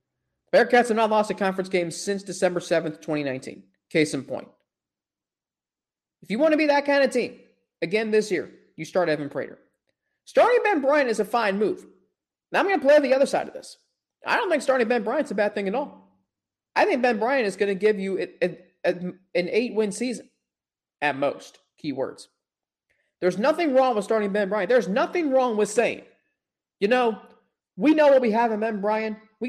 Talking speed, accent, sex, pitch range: 200 wpm, American, male, 190-245 Hz